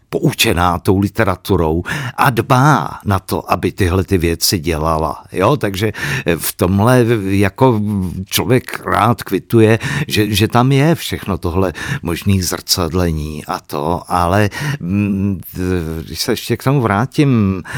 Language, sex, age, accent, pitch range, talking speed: Czech, male, 50-69, native, 90-130 Hz, 125 wpm